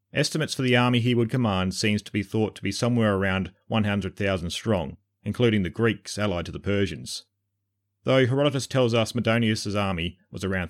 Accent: Australian